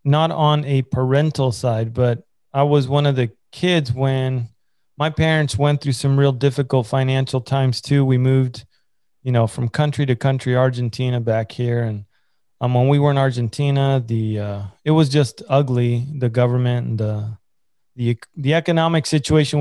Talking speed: 170 wpm